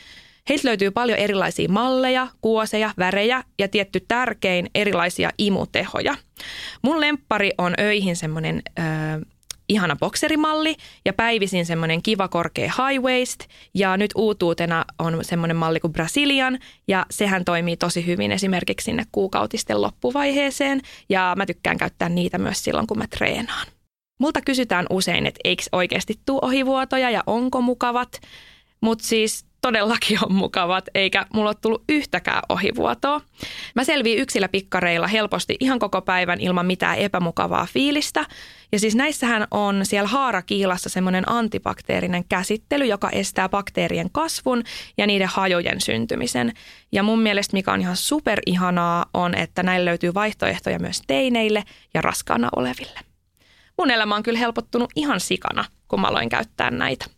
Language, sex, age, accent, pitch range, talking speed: Finnish, female, 20-39, native, 180-245 Hz, 140 wpm